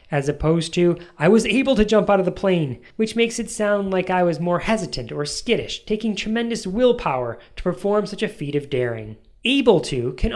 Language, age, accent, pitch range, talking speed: English, 20-39, American, 140-210 Hz, 210 wpm